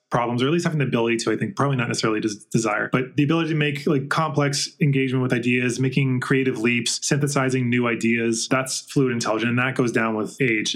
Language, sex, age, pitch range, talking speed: English, male, 20-39, 125-140 Hz, 225 wpm